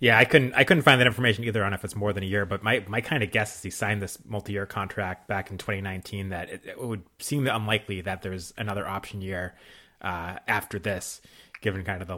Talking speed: 240 wpm